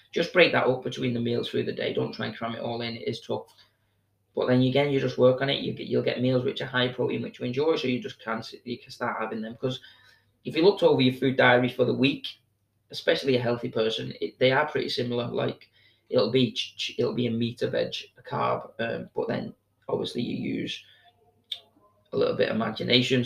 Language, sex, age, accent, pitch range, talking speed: English, male, 20-39, British, 110-135 Hz, 230 wpm